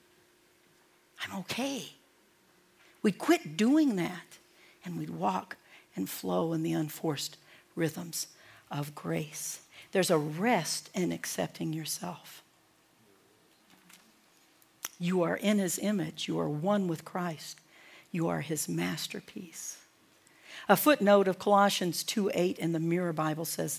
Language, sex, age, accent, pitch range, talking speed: English, female, 60-79, American, 165-220 Hz, 120 wpm